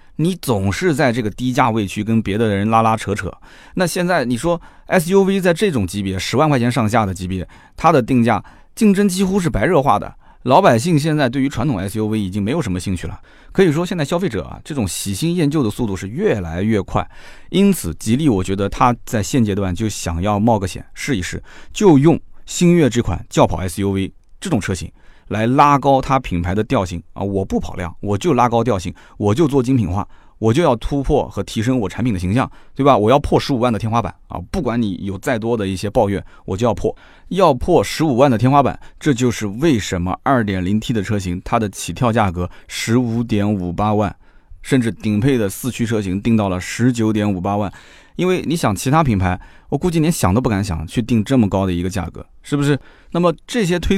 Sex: male